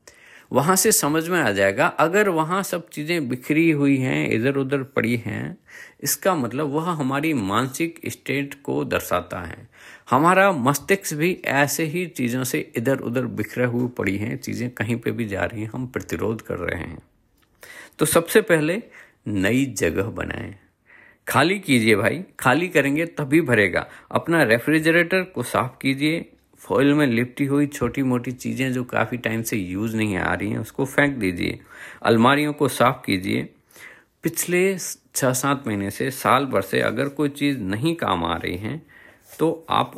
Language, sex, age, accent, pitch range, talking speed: Hindi, male, 50-69, native, 110-155 Hz, 165 wpm